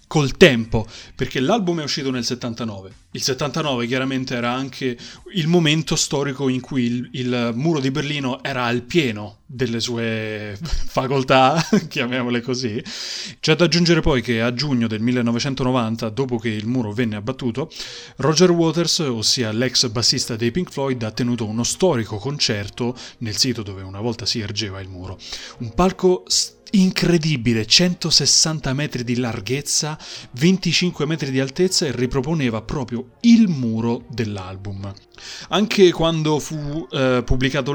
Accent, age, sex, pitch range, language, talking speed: native, 30-49, male, 115-145 Hz, Italian, 145 wpm